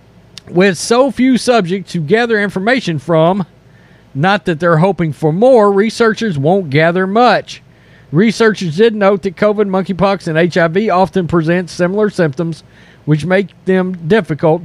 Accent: American